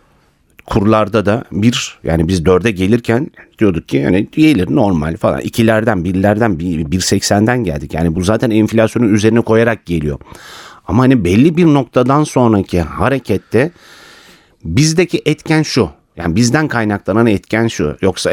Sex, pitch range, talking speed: male, 90-140 Hz, 140 wpm